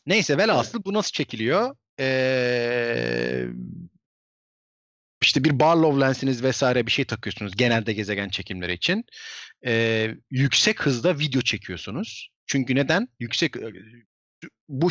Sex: male